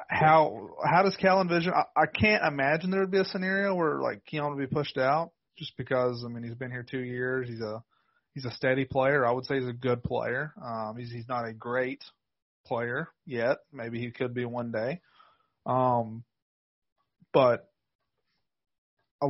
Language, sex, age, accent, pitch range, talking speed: English, male, 30-49, American, 120-140 Hz, 185 wpm